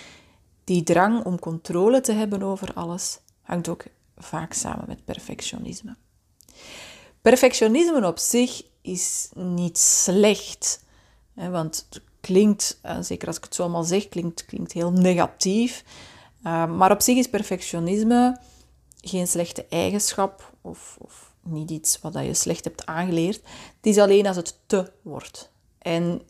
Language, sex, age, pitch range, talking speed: Dutch, female, 30-49, 165-205 Hz, 130 wpm